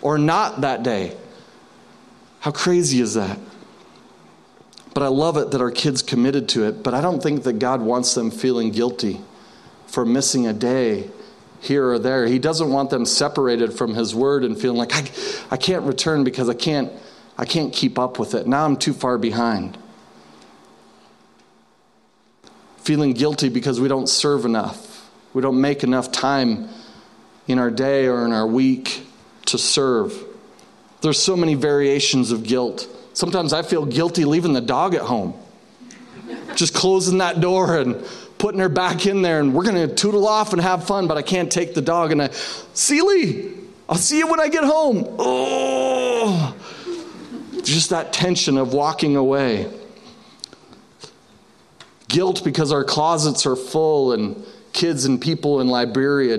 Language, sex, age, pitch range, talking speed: English, male, 40-59, 130-180 Hz, 165 wpm